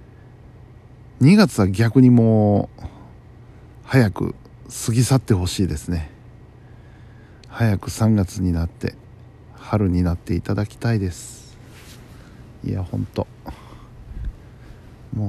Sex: male